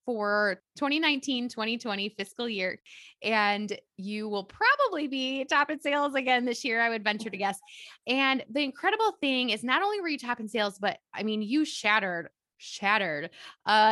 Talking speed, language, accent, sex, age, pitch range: 175 wpm, English, American, female, 20-39, 205-285 Hz